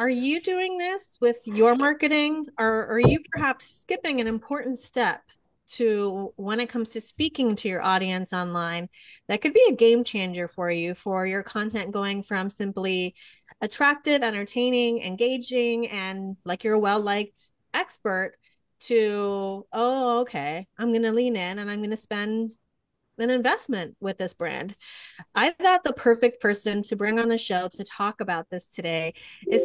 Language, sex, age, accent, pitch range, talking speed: English, female, 30-49, American, 200-250 Hz, 170 wpm